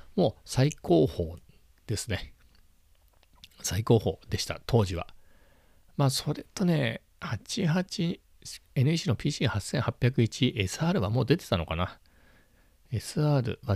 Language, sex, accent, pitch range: Japanese, male, native, 90-135 Hz